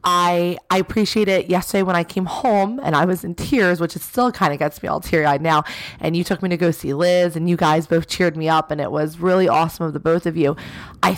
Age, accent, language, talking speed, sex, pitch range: 20-39, American, English, 275 wpm, female, 165-190 Hz